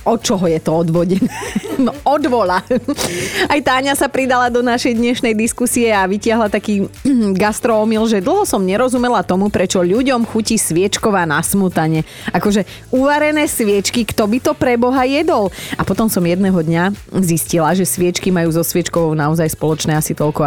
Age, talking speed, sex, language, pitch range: 30-49, 160 wpm, female, Slovak, 185-240 Hz